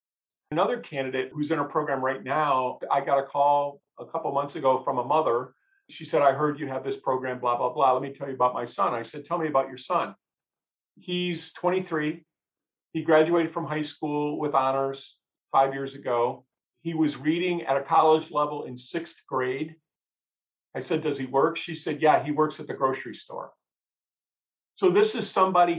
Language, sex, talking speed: English, male, 195 wpm